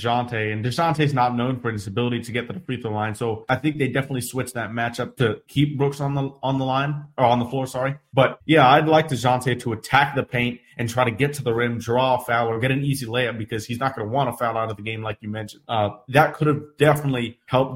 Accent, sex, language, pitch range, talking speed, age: American, male, English, 115-140 Hz, 275 wpm, 20-39